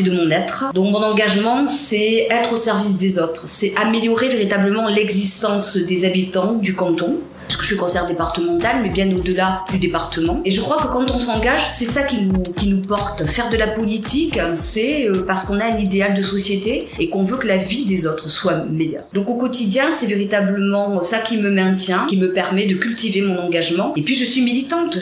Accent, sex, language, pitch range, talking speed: French, female, French, 170-215 Hz, 210 wpm